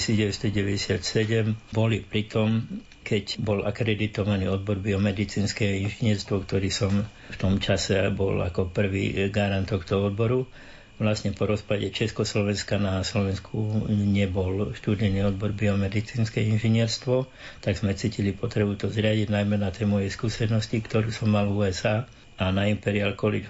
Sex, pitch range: male, 100-110 Hz